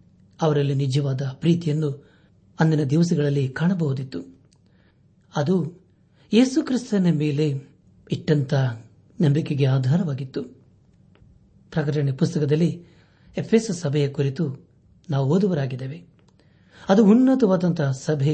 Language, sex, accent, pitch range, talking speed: Kannada, male, native, 140-170 Hz, 75 wpm